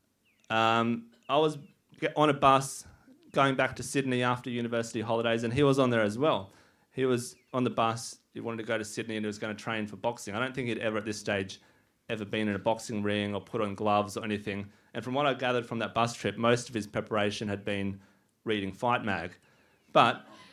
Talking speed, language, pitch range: 235 wpm, English, 110-140 Hz